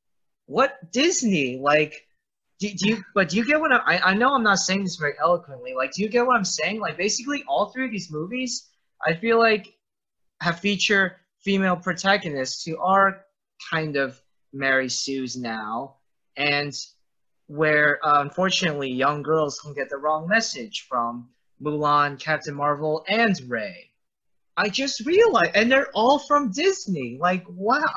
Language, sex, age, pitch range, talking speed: English, male, 20-39, 140-225 Hz, 165 wpm